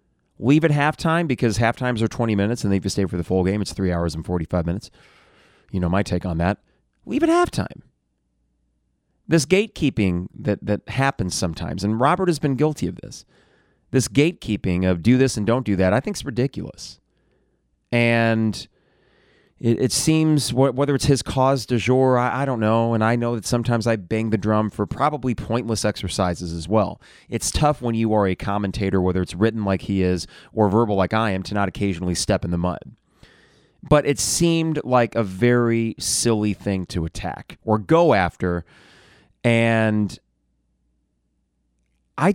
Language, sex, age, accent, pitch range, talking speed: English, male, 30-49, American, 95-135 Hz, 180 wpm